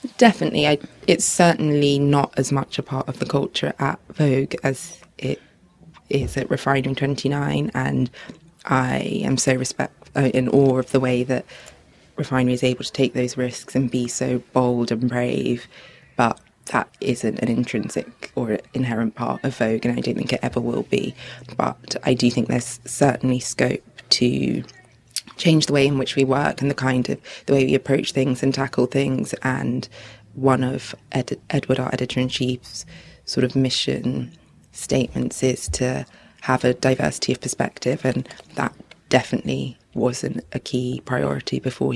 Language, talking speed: English, 160 wpm